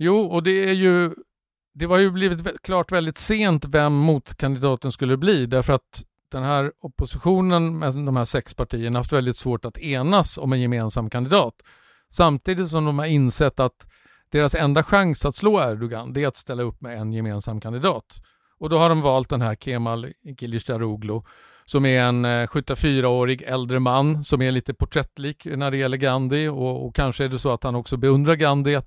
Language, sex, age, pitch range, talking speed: Swedish, male, 50-69, 125-150 Hz, 190 wpm